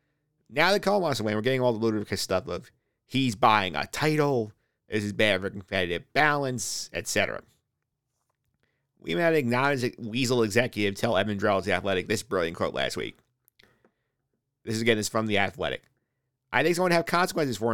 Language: English